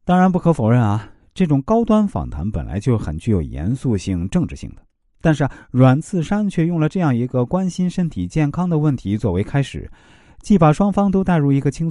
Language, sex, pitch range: Chinese, male, 90-150 Hz